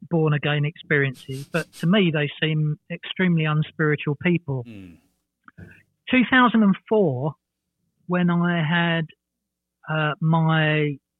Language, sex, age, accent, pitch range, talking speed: English, male, 40-59, British, 140-170 Hz, 85 wpm